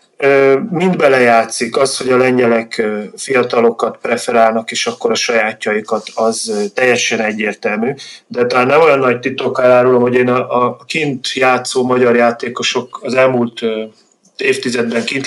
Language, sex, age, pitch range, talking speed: Hungarian, male, 30-49, 115-135 Hz, 130 wpm